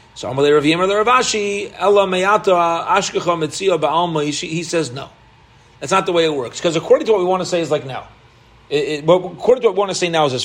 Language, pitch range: English, 160-255 Hz